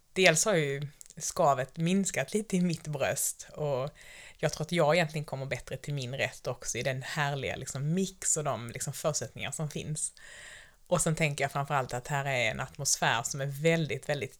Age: 30-49